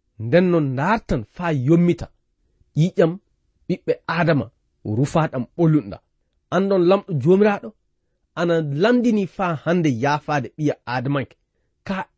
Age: 40-59